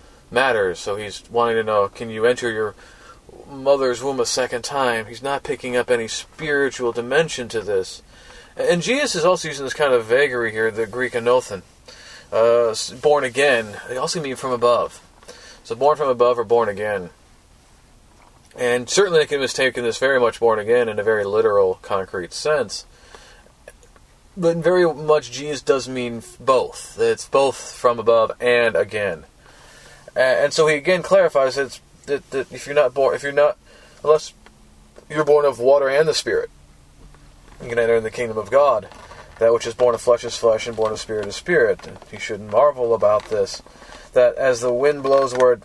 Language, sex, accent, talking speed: English, male, American, 180 wpm